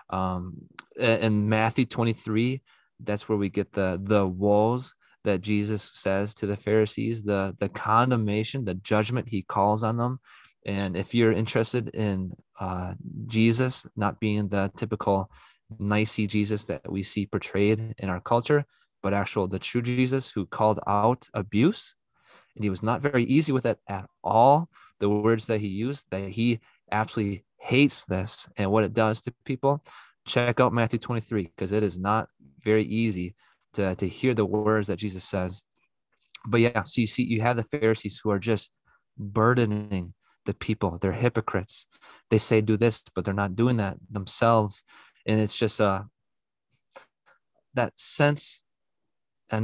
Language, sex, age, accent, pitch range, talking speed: English, male, 20-39, American, 100-115 Hz, 160 wpm